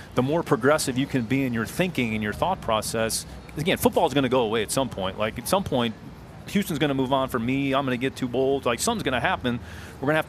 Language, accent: English, American